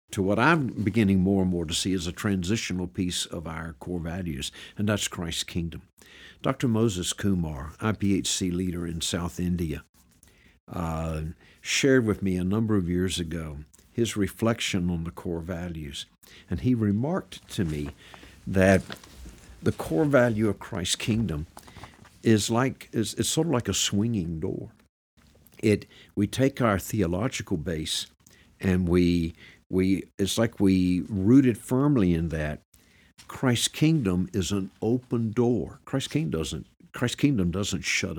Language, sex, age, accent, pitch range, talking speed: English, male, 60-79, American, 85-115 Hz, 150 wpm